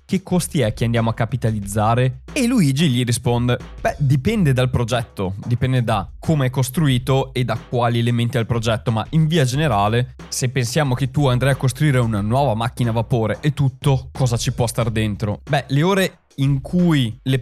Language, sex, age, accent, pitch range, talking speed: Italian, male, 20-39, native, 115-150 Hz, 190 wpm